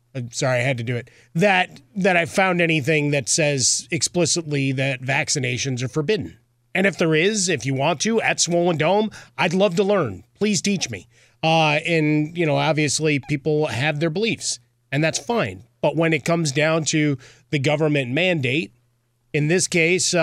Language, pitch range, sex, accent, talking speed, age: English, 130-165 Hz, male, American, 180 wpm, 30-49